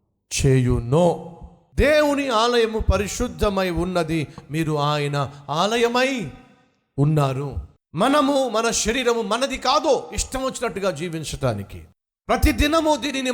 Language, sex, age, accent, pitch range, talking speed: Telugu, male, 50-69, native, 135-225 Hz, 95 wpm